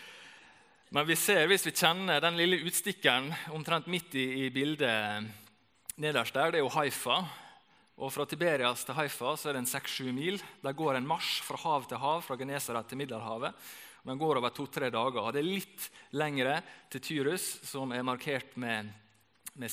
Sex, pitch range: male, 115-150 Hz